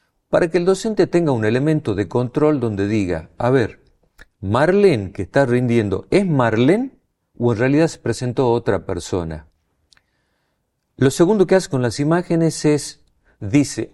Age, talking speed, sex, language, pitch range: 50-69, 150 wpm, male, Spanish, 100-150 Hz